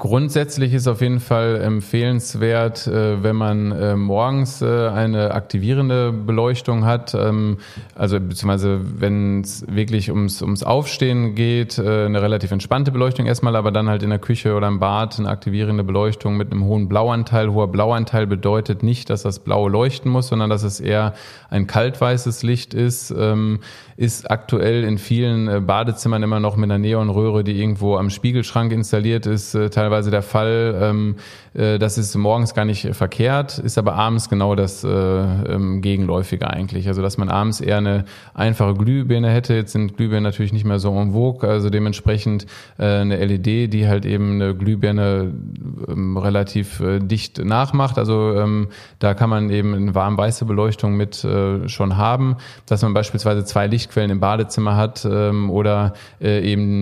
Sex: male